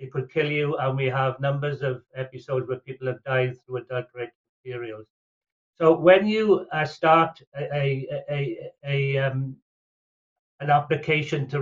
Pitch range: 135-165 Hz